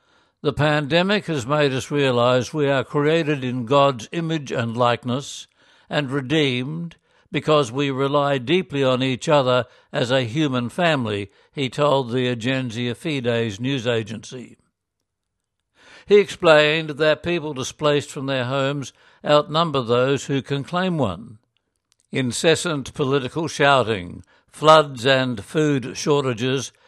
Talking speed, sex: 125 wpm, male